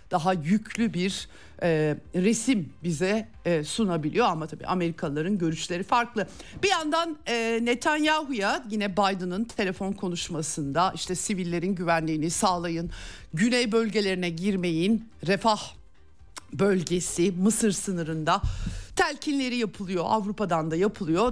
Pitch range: 170-220 Hz